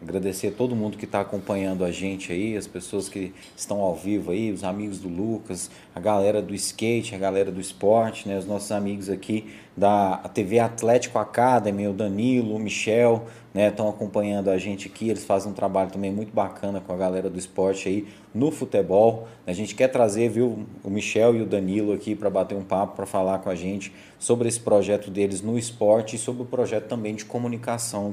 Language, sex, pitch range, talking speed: Portuguese, male, 100-125 Hz, 205 wpm